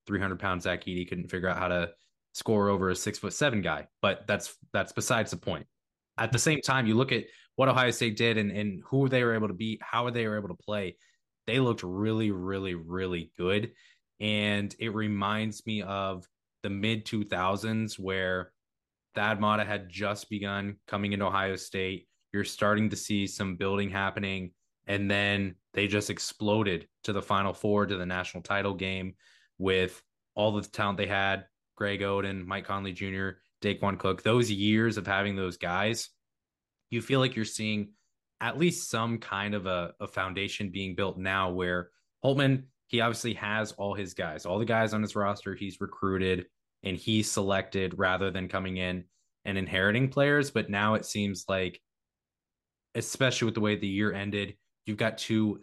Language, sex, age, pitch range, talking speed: English, male, 20-39, 95-110 Hz, 180 wpm